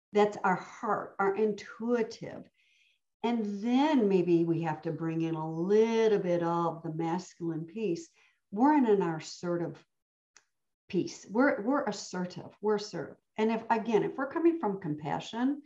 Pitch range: 165-225 Hz